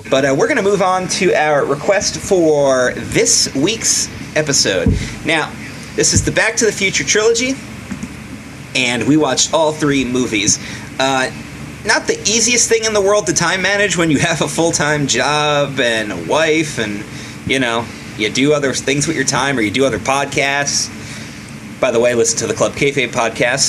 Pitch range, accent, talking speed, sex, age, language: 120-170 Hz, American, 185 wpm, male, 30-49, English